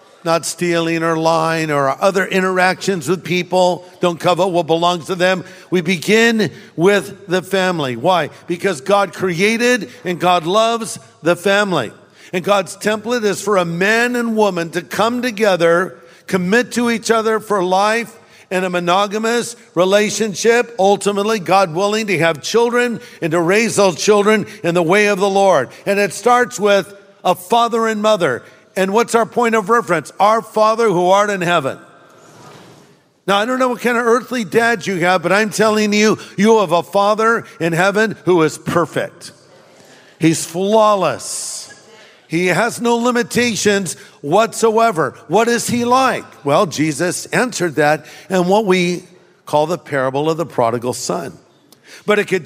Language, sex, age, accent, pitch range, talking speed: English, male, 50-69, American, 175-215 Hz, 160 wpm